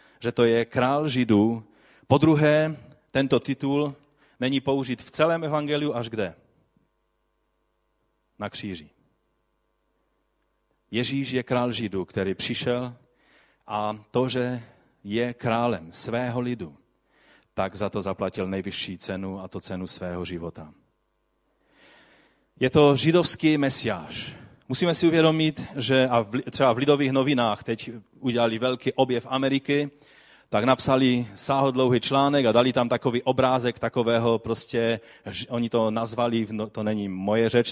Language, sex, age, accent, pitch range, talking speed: Czech, male, 30-49, native, 115-135 Hz, 125 wpm